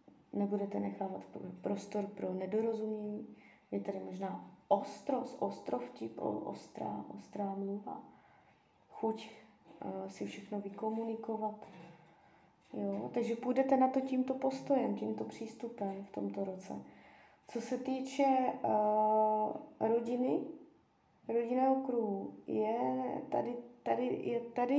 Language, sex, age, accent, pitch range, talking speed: Czech, female, 20-39, native, 205-260 Hz, 85 wpm